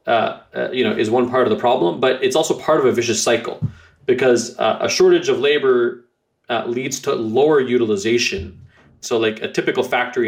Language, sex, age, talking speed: English, male, 20-39, 200 wpm